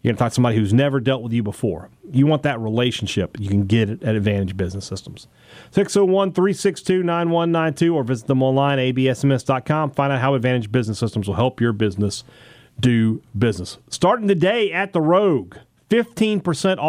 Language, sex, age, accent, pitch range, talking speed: English, male, 40-59, American, 120-155 Hz, 175 wpm